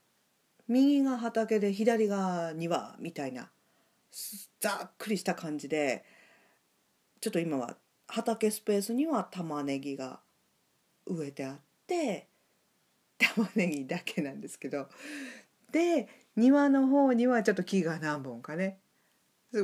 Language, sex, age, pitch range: Japanese, female, 50-69, 160-235 Hz